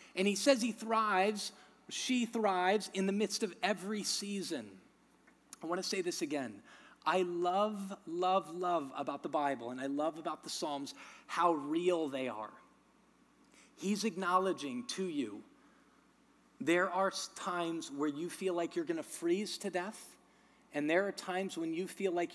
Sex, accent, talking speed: male, American, 165 wpm